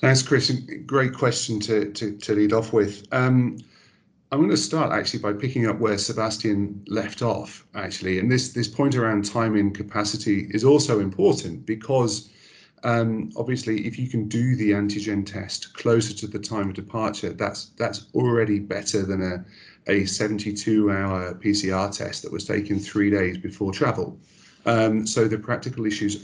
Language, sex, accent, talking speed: English, male, British, 165 wpm